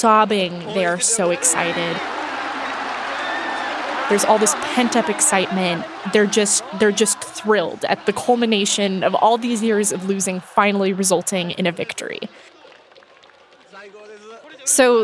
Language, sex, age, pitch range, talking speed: English, female, 20-39, 195-260 Hz, 120 wpm